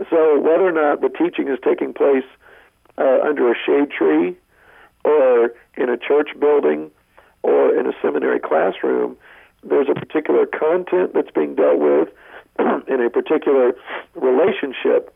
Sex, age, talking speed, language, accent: male, 50-69, 145 wpm, English, American